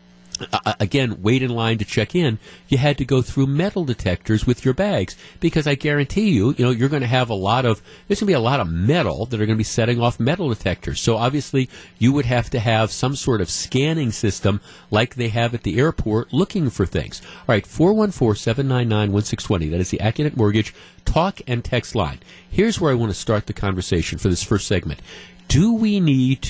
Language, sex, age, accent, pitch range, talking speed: English, male, 50-69, American, 105-140 Hz, 220 wpm